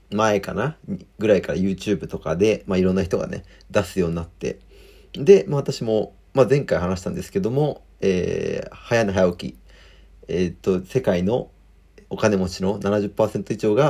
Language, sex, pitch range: Japanese, male, 95-110 Hz